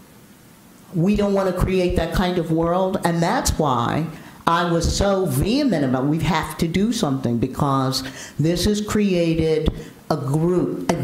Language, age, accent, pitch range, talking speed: English, 50-69, American, 160-210 Hz, 160 wpm